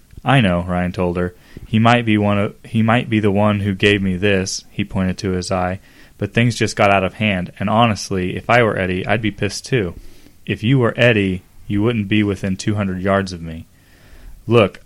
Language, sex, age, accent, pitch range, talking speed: English, male, 20-39, American, 100-125 Hz, 220 wpm